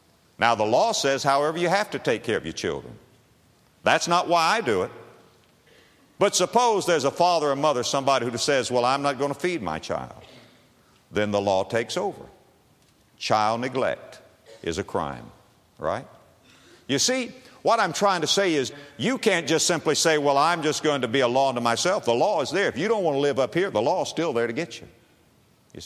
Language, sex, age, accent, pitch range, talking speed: English, male, 50-69, American, 140-220 Hz, 215 wpm